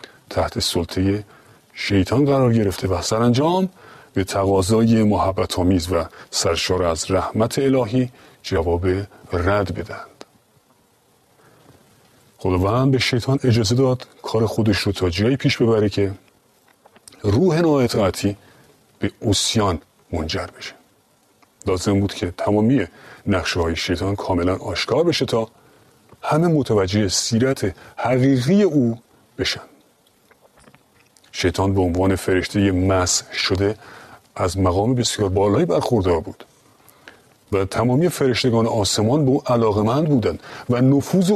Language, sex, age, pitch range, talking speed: Persian, male, 40-59, 95-130 Hz, 110 wpm